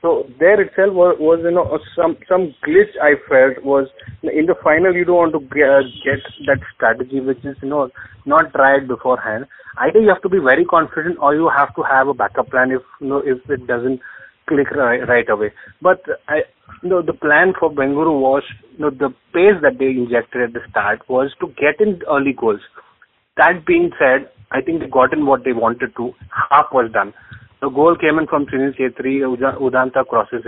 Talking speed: 200 wpm